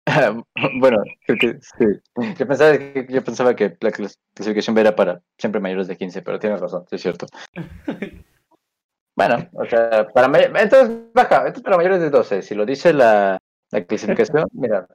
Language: English